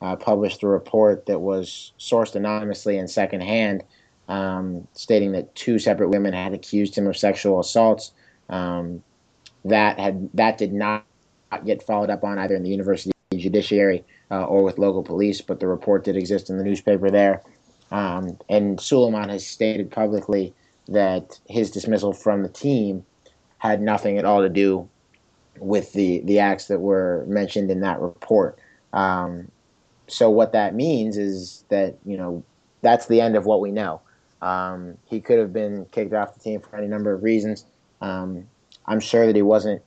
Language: English